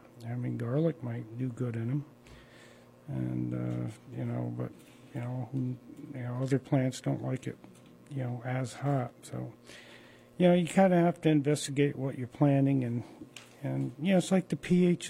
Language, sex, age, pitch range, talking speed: English, male, 50-69, 120-145 Hz, 185 wpm